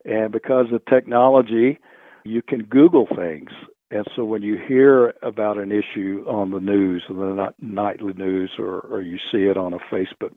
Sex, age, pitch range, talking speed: male, 60-79, 100-120 Hz, 175 wpm